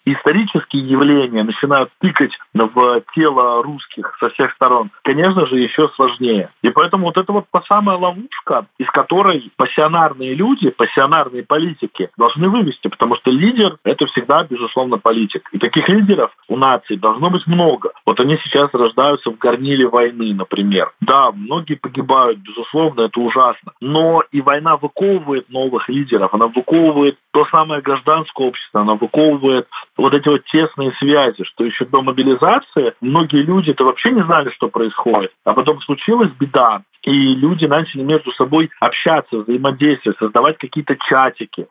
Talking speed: 150 wpm